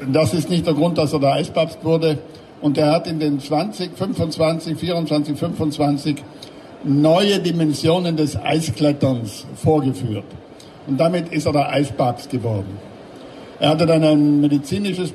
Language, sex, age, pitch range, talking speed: German, male, 60-79, 145-165 Hz, 145 wpm